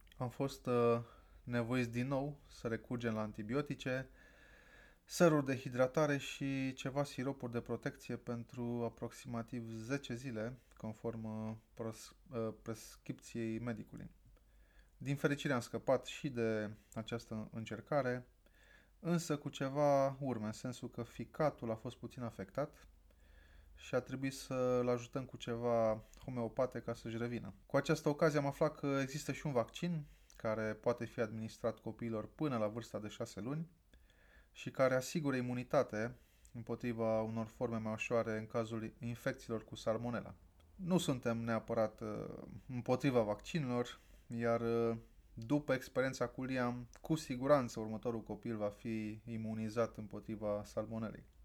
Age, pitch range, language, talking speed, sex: 20-39, 110-135 Hz, Romanian, 130 wpm, male